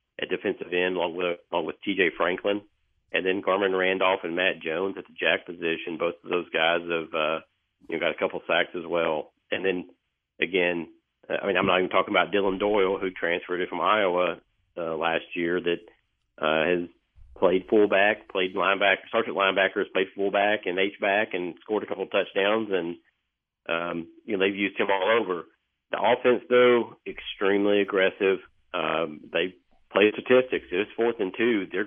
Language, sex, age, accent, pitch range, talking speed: English, male, 50-69, American, 85-100 Hz, 180 wpm